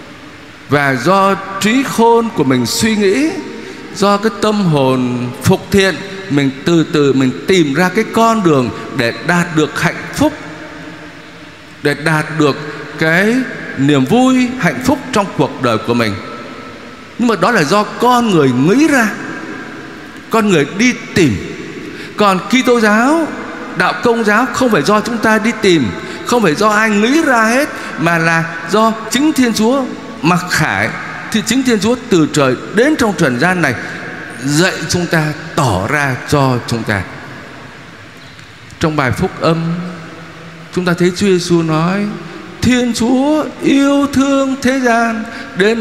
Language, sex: Vietnamese, male